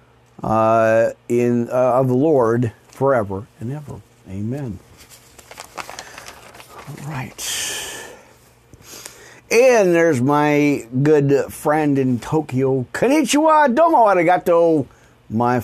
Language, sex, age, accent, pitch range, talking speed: English, male, 50-69, American, 115-170 Hz, 90 wpm